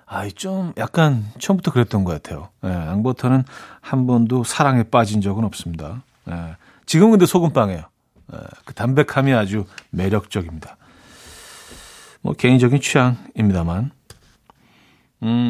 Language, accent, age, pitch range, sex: Korean, native, 40-59, 115-165 Hz, male